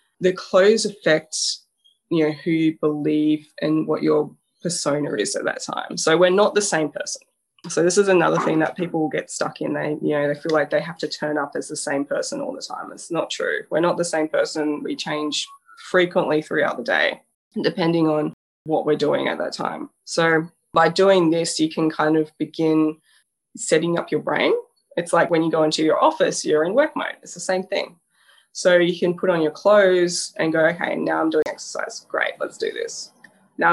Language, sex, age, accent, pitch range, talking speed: English, female, 20-39, Australian, 155-200 Hz, 215 wpm